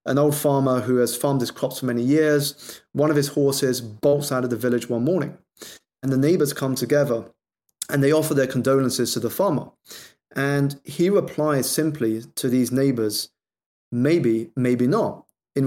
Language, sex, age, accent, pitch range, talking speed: English, male, 30-49, British, 125-145 Hz, 175 wpm